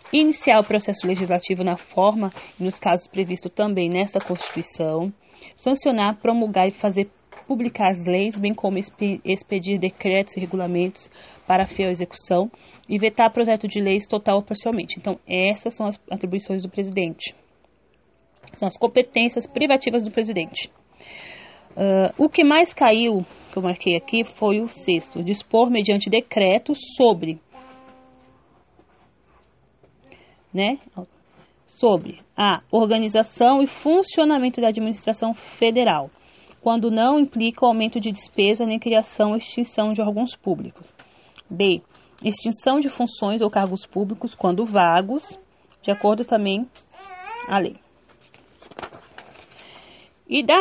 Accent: Brazilian